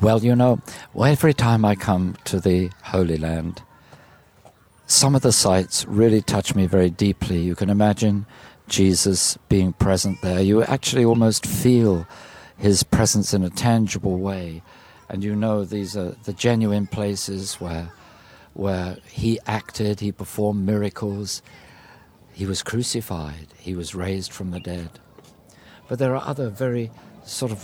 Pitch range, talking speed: 95-120 Hz, 150 wpm